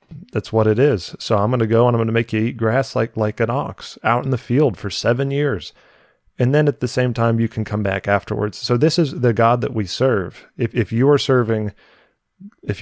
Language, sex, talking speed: English, male, 245 wpm